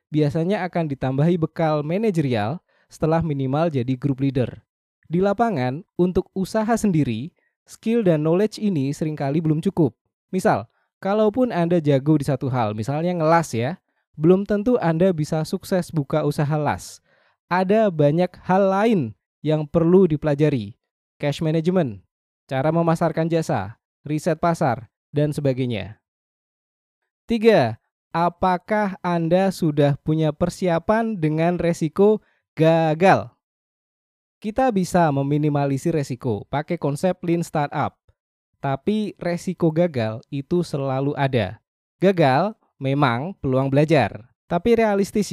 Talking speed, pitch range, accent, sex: 115 wpm, 140-185 Hz, native, male